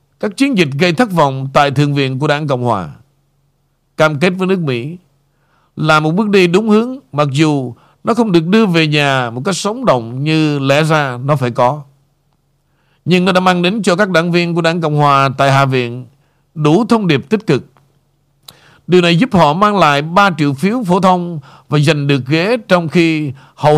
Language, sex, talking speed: Vietnamese, male, 205 wpm